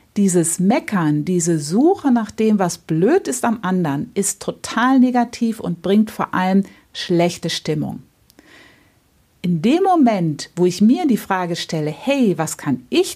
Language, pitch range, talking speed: German, 170-235 Hz, 150 wpm